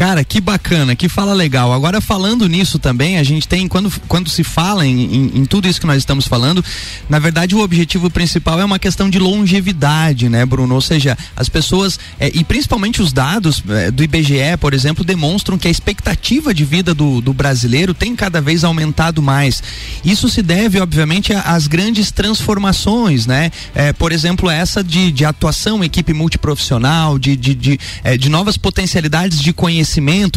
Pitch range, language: 140-190 Hz, Portuguese